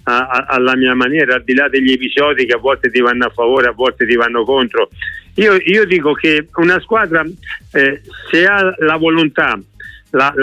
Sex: male